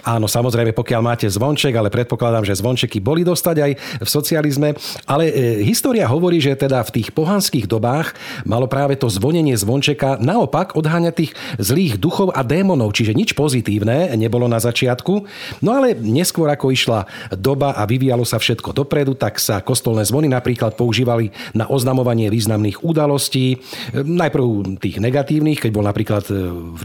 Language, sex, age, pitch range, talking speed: Slovak, male, 40-59, 115-145 Hz, 155 wpm